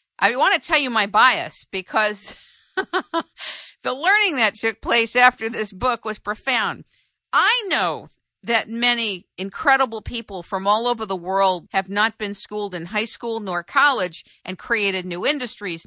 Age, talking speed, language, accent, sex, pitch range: 50-69, 160 wpm, English, American, female, 200-275 Hz